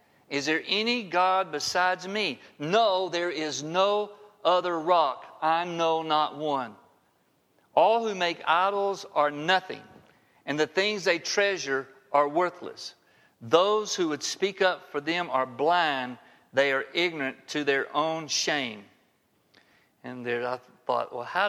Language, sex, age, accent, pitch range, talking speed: English, male, 50-69, American, 130-185 Hz, 140 wpm